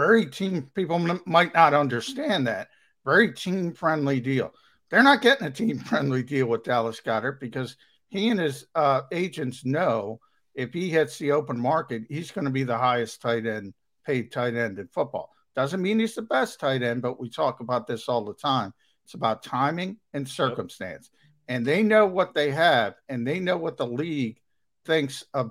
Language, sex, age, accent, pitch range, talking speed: English, male, 50-69, American, 120-155 Hz, 185 wpm